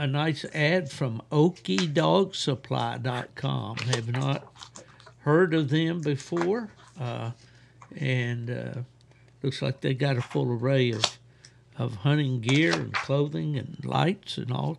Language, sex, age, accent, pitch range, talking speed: English, male, 60-79, American, 120-145 Hz, 125 wpm